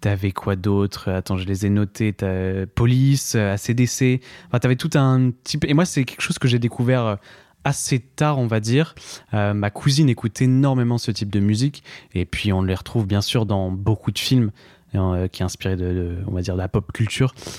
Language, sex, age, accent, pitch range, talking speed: French, male, 20-39, French, 100-125 Hz, 205 wpm